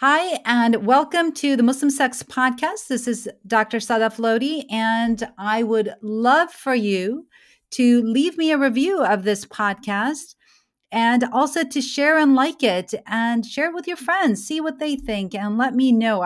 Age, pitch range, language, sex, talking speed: 40-59, 205-270 Hz, English, female, 175 wpm